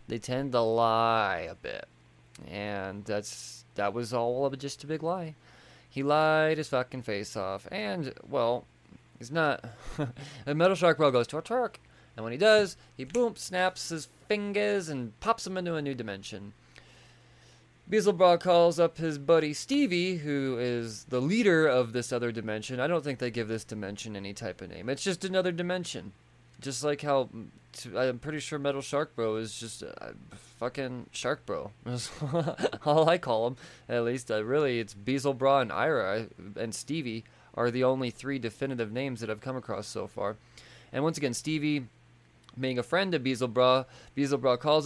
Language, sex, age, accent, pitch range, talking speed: English, male, 20-39, American, 115-155 Hz, 180 wpm